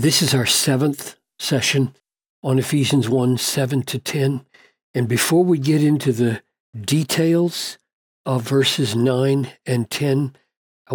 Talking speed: 130 wpm